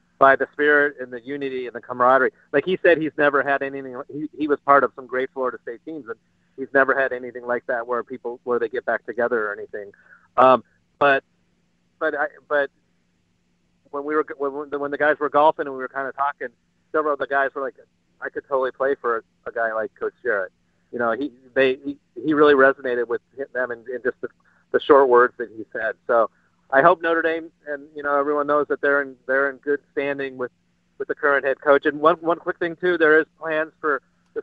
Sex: male